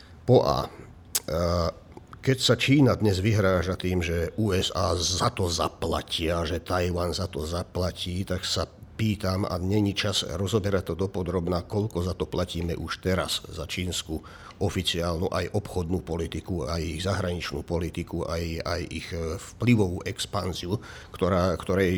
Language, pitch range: Slovak, 85-105 Hz